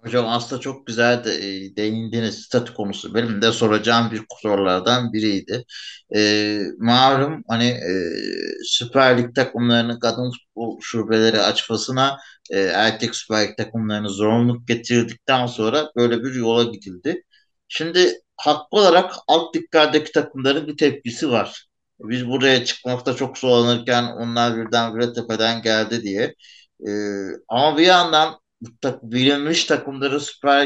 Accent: native